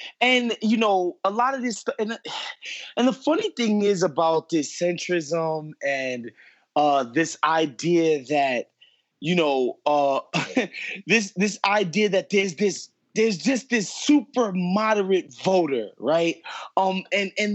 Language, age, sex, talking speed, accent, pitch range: English, 20-39, male, 135 wpm, American, 170-220 Hz